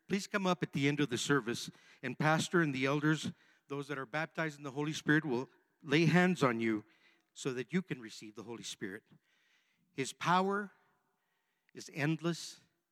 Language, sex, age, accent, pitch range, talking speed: English, male, 50-69, American, 140-175 Hz, 180 wpm